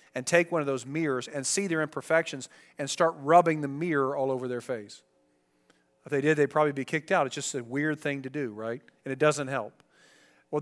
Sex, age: male, 40-59